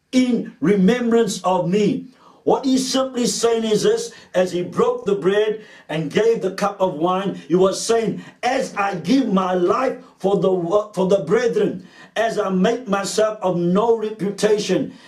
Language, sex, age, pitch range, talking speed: English, male, 60-79, 175-220 Hz, 165 wpm